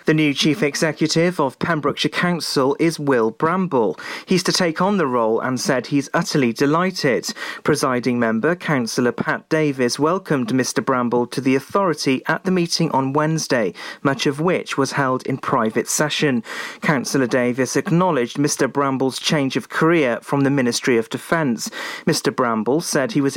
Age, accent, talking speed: 40-59, British, 160 wpm